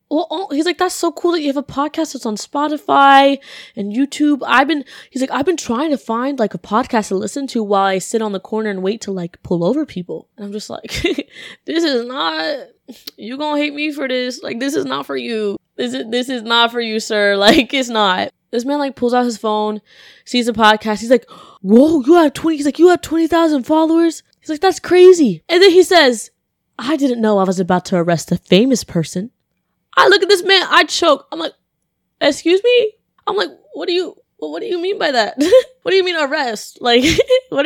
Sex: female